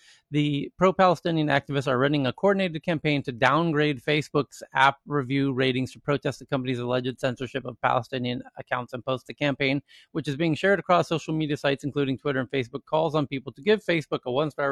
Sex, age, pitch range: male, 30-49, 130-160 Hz